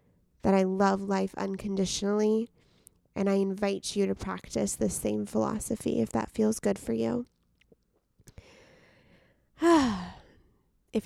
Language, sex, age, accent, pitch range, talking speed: English, female, 20-39, American, 195-220 Hz, 115 wpm